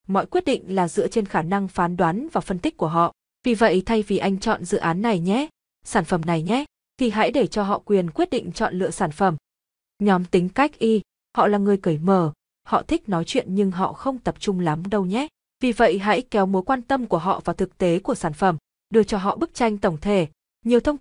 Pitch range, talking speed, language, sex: 180-235 Hz, 245 wpm, Vietnamese, female